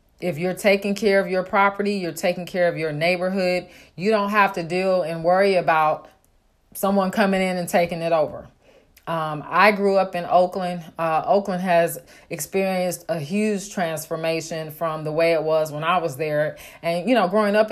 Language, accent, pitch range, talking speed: English, American, 155-180 Hz, 185 wpm